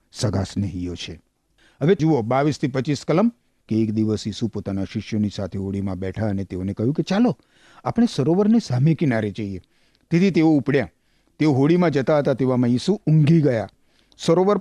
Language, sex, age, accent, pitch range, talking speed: Gujarati, male, 50-69, native, 115-190 Hz, 60 wpm